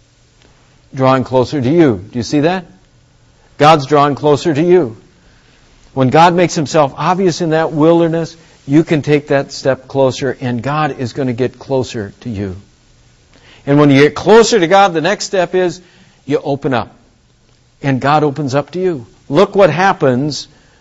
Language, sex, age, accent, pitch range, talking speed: English, male, 60-79, American, 135-190 Hz, 170 wpm